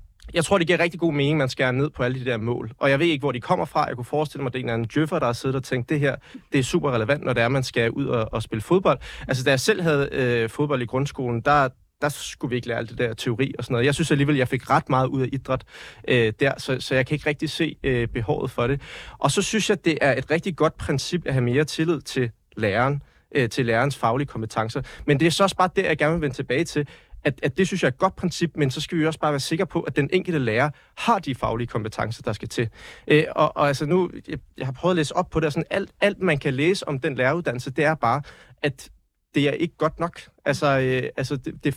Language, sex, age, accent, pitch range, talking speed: Danish, male, 30-49, native, 130-160 Hz, 290 wpm